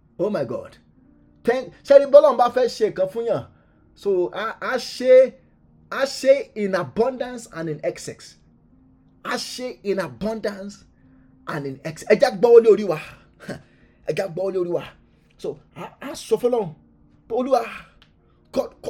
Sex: male